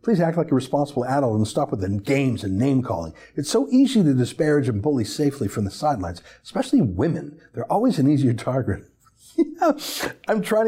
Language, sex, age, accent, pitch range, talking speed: English, male, 60-79, American, 125-195 Hz, 190 wpm